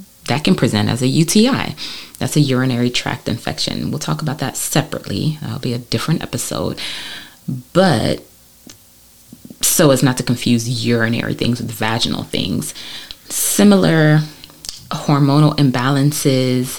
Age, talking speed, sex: 20-39, 125 wpm, female